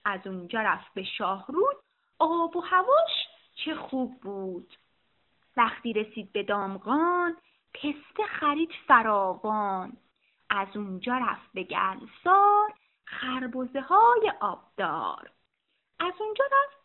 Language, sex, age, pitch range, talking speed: Persian, female, 30-49, 210-325 Hz, 100 wpm